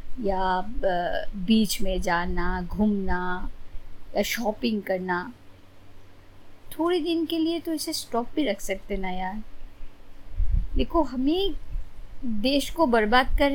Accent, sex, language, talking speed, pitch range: native, female, Hindi, 120 wpm, 190-295 Hz